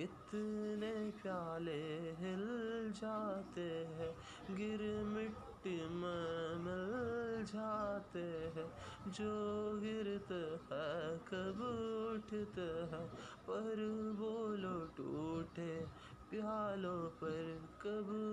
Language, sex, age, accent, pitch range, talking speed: Hindi, male, 20-39, native, 165-210 Hz, 70 wpm